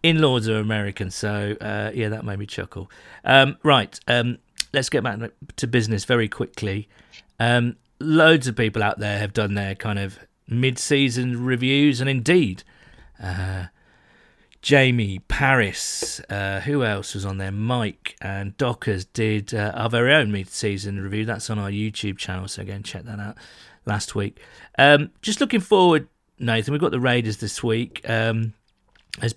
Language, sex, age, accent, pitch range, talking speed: English, male, 40-59, British, 100-120 Hz, 165 wpm